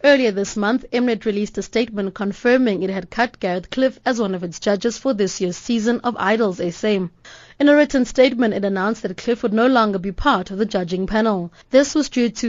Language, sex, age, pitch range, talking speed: English, female, 20-39, 195-245 Hz, 220 wpm